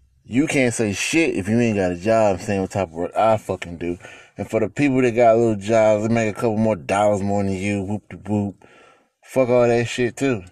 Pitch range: 100-120 Hz